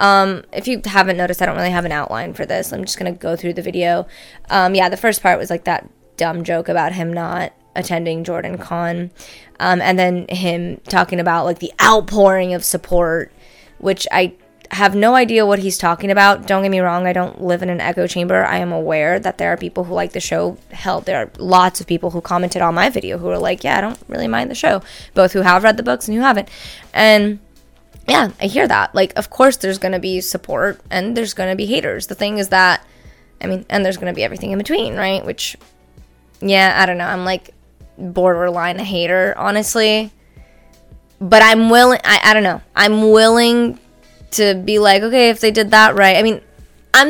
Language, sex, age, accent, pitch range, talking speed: English, female, 20-39, American, 180-215 Hz, 225 wpm